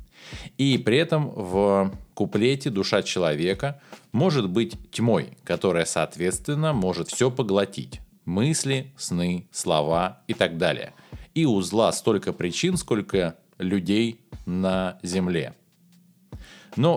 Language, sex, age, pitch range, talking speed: Russian, male, 20-39, 85-130 Hz, 105 wpm